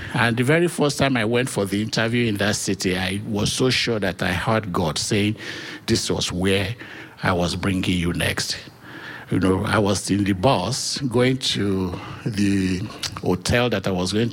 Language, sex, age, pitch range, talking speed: English, male, 60-79, 95-115 Hz, 190 wpm